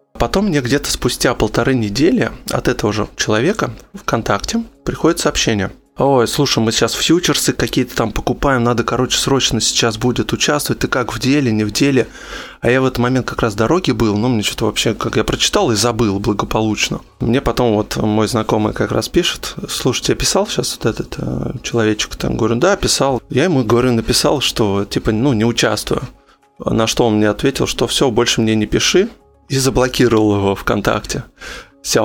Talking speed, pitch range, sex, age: 185 wpm, 110-125 Hz, male, 20-39